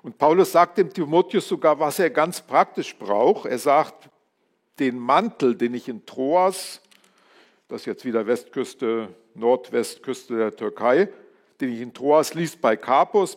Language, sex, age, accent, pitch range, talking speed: German, male, 50-69, German, 120-180 Hz, 155 wpm